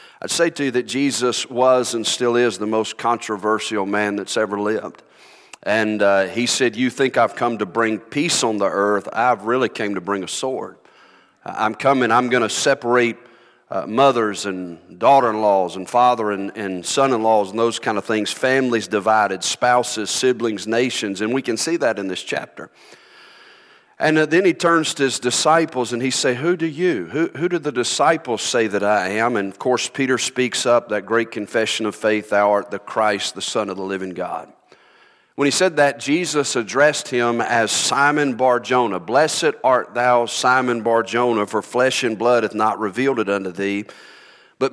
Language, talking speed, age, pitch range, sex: English, 185 wpm, 40-59, 105-130 Hz, male